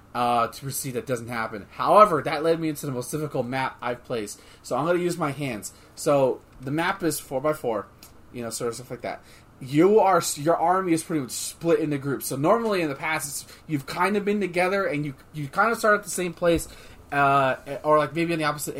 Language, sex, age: English, male, 20-39